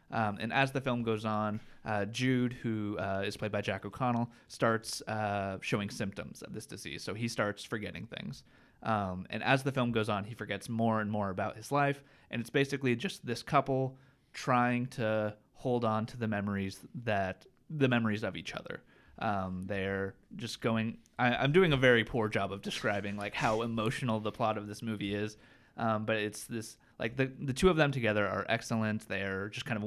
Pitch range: 105-125 Hz